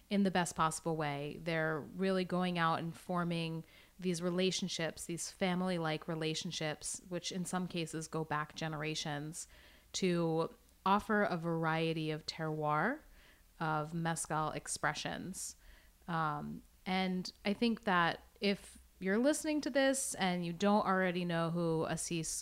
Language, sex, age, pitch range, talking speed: English, female, 30-49, 160-185 Hz, 130 wpm